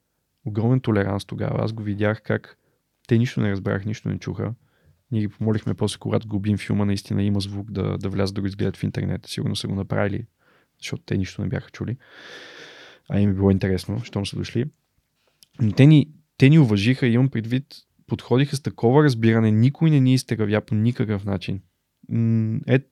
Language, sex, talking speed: Bulgarian, male, 185 wpm